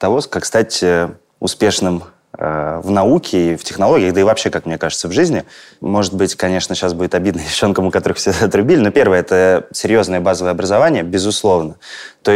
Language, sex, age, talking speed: Russian, male, 20-39, 180 wpm